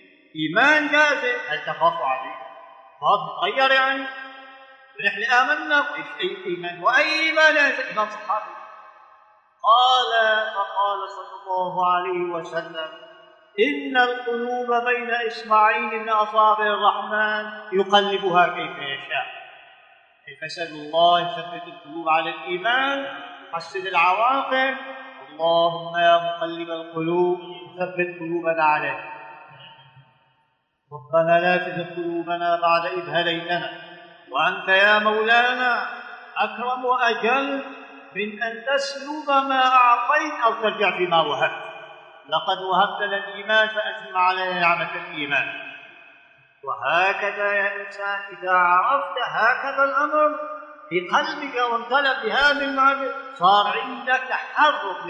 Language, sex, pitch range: Arabic, male, 175-265 Hz